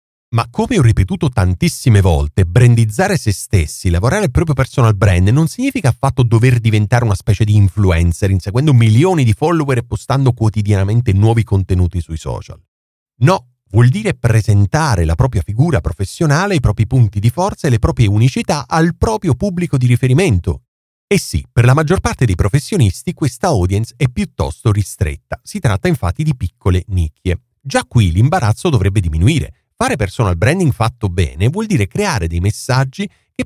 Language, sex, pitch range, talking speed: Italian, male, 100-145 Hz, 165 wpm